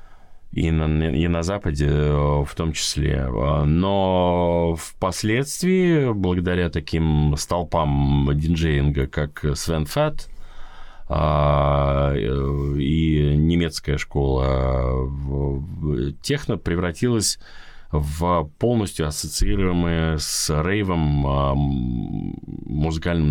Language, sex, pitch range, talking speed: Russian, male, 75-90 Hz, 75 wpm